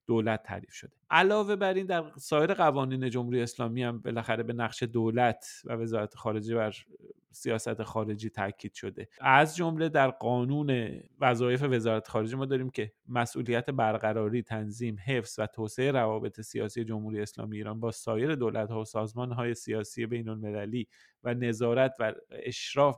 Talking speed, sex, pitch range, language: 145 wpm, male, 110-130 Hz, Persian